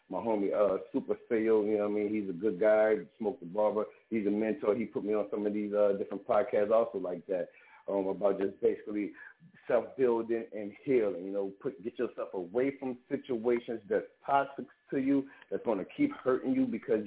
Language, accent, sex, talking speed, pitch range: English, American, male, 205 wpm, 105-140 Hz